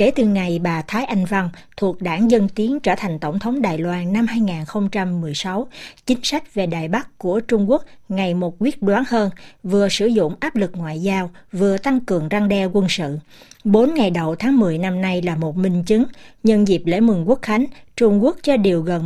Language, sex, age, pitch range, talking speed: Vietnamese, female, 60-79, 175-230 Hz, 215 wpm